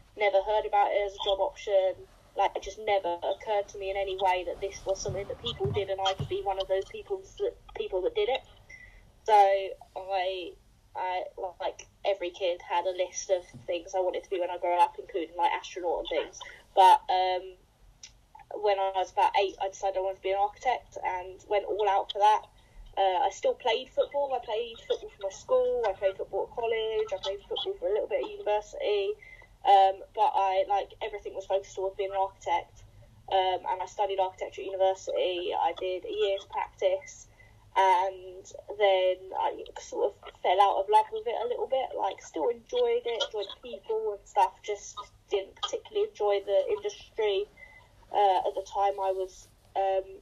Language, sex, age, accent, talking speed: English, female, 10-29, British, 195 wpm